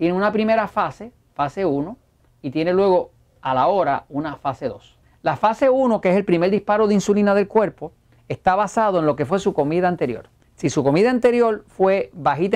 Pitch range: 145-200 Hz